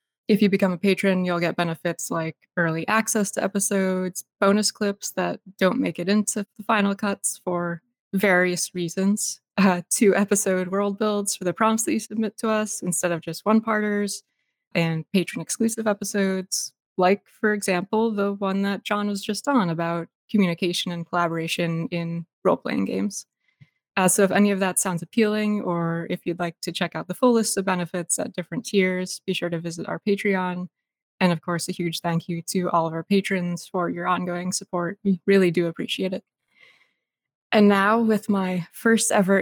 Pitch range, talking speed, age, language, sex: 175-205 Hz, 180 wpm, 20-39, English, female